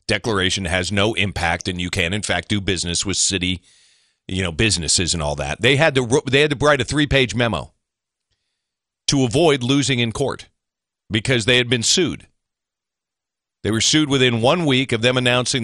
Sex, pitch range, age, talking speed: male, 100-140 Hz, 40-59, 185 wpm